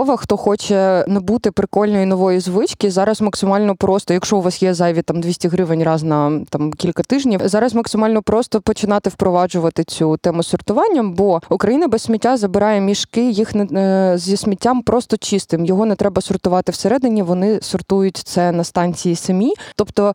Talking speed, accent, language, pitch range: 165 wpm, native, Ukrainian, 180-215 Hz